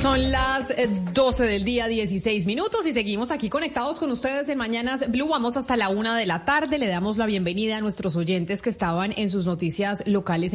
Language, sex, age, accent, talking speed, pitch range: Spanish, female, 30-49, Colombian, 205 wpm, 185-240 Hz